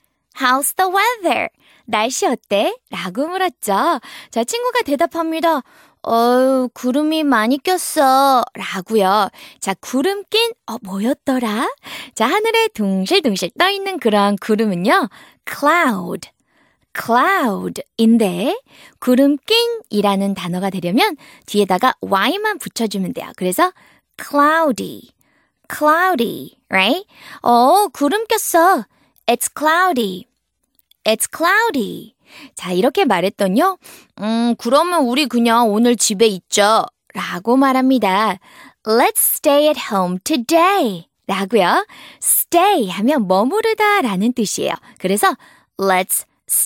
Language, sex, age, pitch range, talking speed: English, female, 20-39, 215-340 Hz, 95 wpm